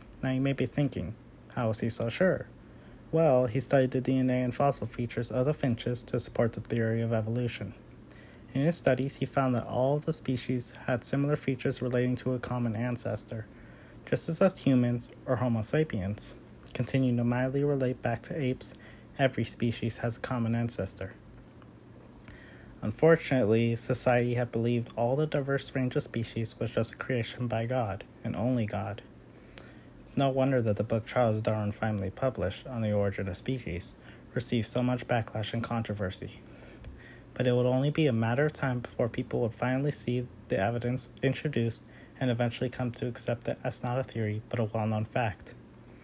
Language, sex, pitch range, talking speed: English, male, 115-130 Hz, 175 wpm